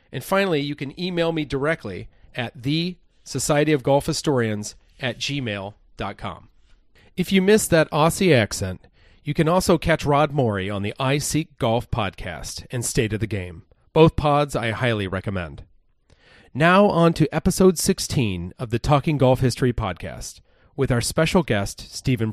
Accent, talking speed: American, 150 wpm